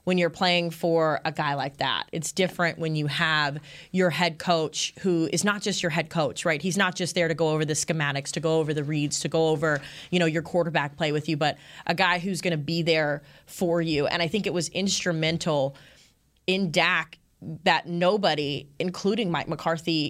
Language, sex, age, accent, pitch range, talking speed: English, female, 20-39, American, 150-180 Hz, 210 wpm